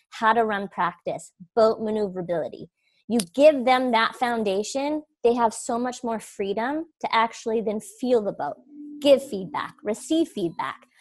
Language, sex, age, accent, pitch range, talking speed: English, female, 20-39, American, 215-290 Hz, 145 wpm